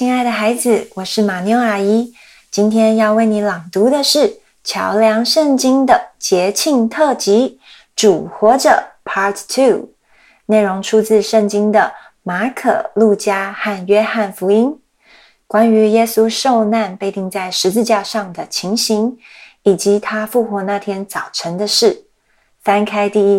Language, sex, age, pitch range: Chinese, female, 30-49, 200-240 Hz